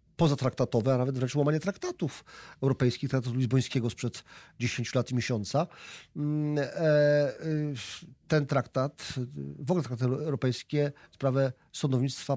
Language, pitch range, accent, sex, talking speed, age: Polish, 125-150 Hz, native, male, 110 wpm, 40-59